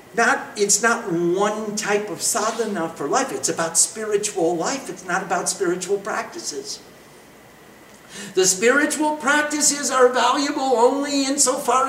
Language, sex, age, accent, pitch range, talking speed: English, male, 50-69, American, 220-315 Hz, 125 wpm